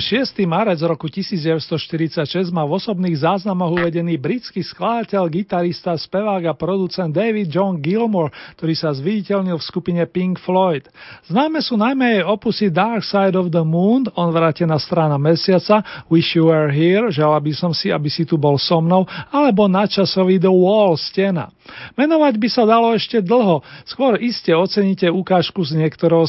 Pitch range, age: 165-200 Hz, 40-59